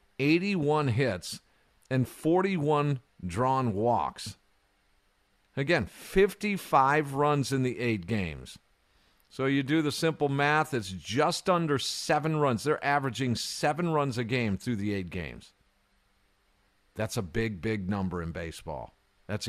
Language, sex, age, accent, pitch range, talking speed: English, male, 50-69, American, 100-145 Hz, 130 wpm